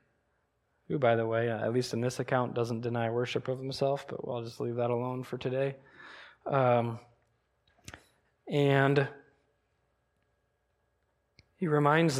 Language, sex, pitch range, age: English, male, 125-155 Hz, 20-39